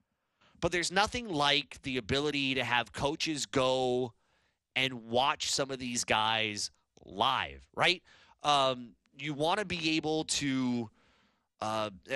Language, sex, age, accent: English, male, 30-49, American